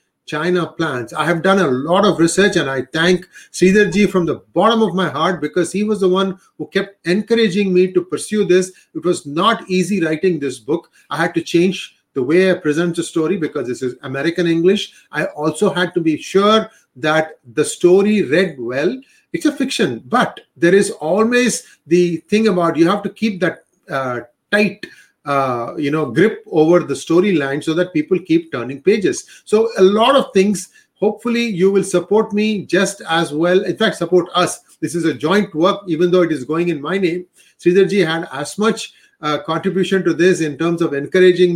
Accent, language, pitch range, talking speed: Indian, English, 160-195 Hz, 195 wpm